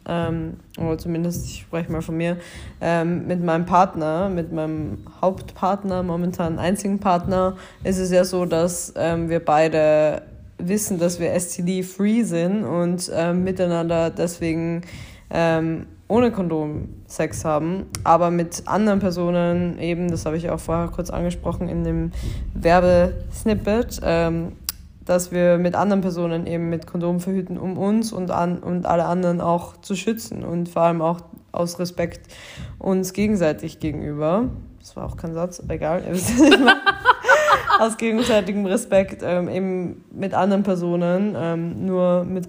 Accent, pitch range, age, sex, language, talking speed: German, 165-185 Hz, 20-39, female, German, 145 wpm